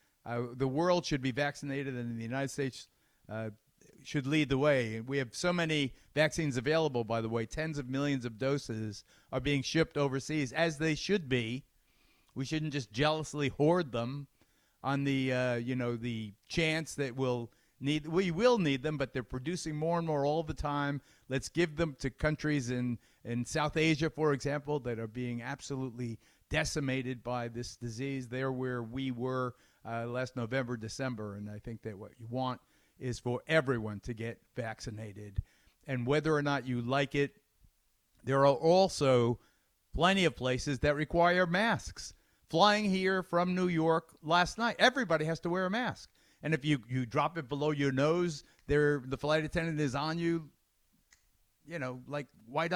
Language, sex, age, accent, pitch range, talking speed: English, male, 40-59, American, 125-160 Hz, 175 wpm